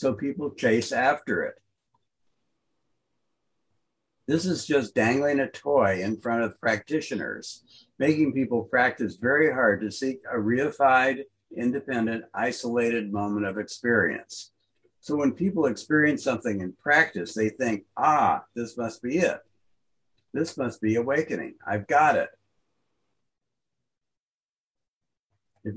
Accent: American